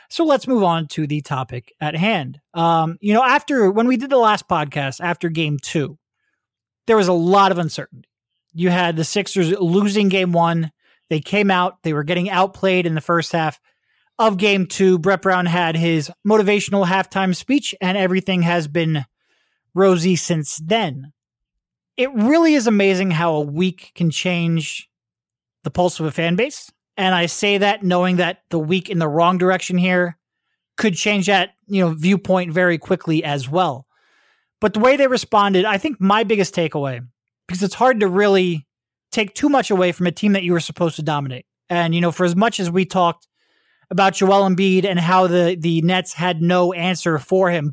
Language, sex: English, male